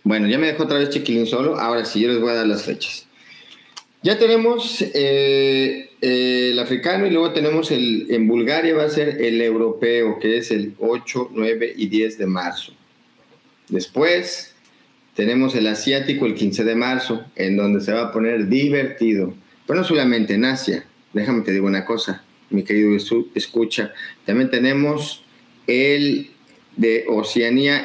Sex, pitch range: male, 110-135 Hz